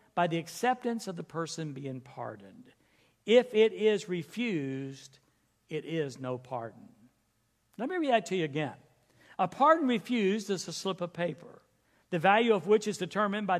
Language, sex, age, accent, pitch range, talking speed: English, male, 60-79, American, 145-210 Hz, 165 wpm